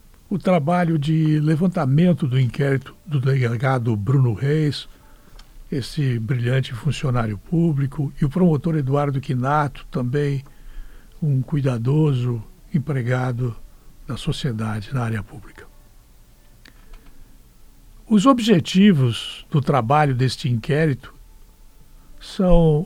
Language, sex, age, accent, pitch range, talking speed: Portuguese, male, 60-79, Brazilian, 125-170 Hz, 90 wpm